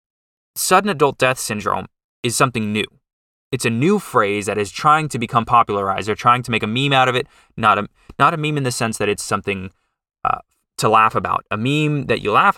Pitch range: 105-135 Hz